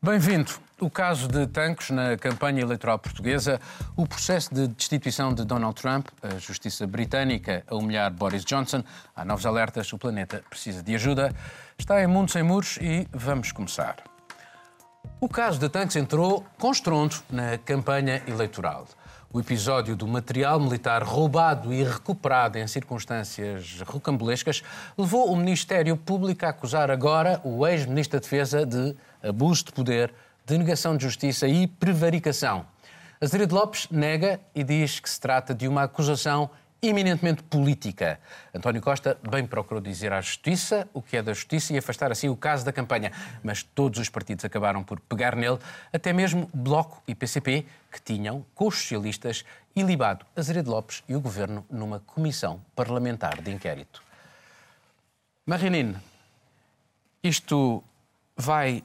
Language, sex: Portuguese, male